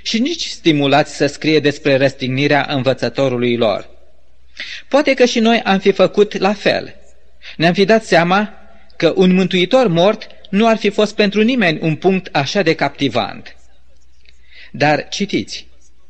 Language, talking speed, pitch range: Romanian, 145 wpm, 145-205 Hz